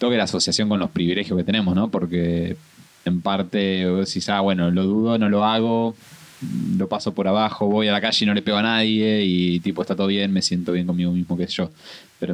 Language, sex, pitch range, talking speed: Spanish, male, 95-125 Hz, 235 wpm